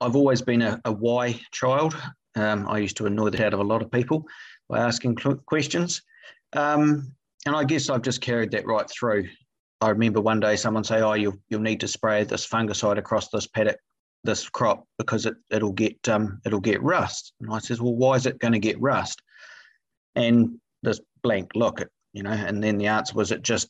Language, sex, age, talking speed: English, male, 40-59, 215 wpm